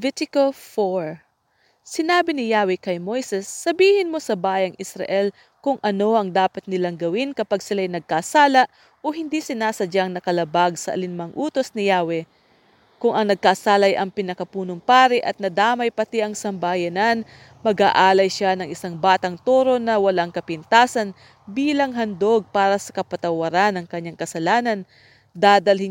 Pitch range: 185-220 Hz